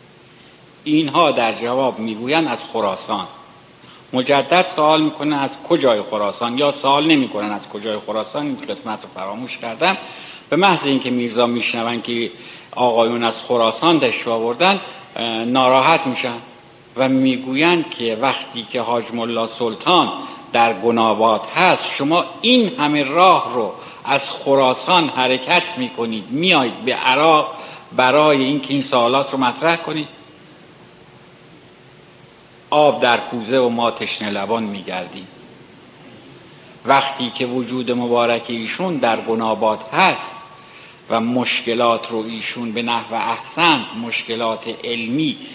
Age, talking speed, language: 60-79, 120 wpm, Persian